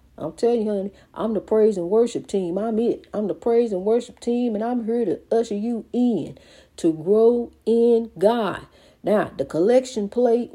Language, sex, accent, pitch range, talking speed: English, female, American, 200-235 Hz, 195 wpm